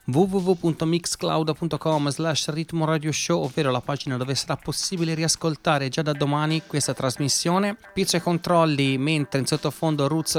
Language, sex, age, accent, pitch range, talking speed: Italian, male, 30-49, native, 130-160 Hz, 135 wpm